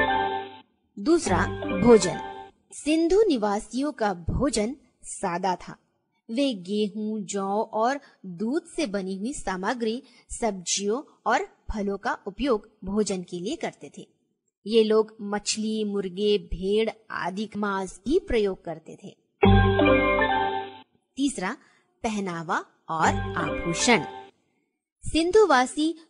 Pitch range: 195-245 Hz